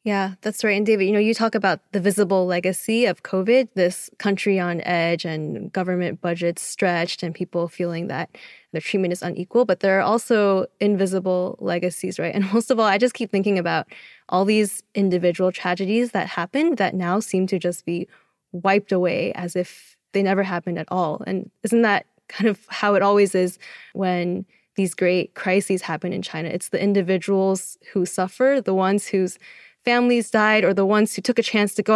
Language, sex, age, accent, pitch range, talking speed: English, female, 10-29, American, 180-210 Hz, 195 wpm